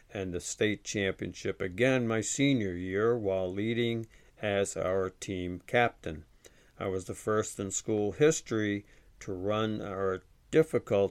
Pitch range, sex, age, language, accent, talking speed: 95-125 Hz, male, 60-79, English, American, 135 wpm